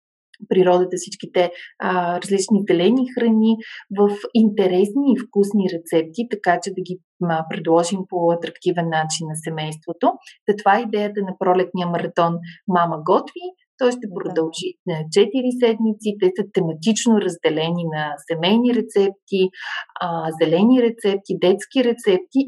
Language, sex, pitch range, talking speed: Bulgarian, female, 175-235 Hz, 125 wpm